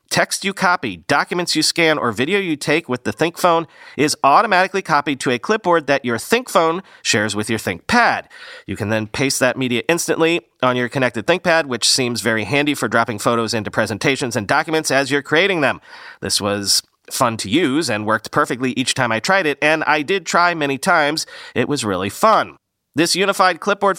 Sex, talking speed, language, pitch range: male, 195 wpm, English, 120-165 Hz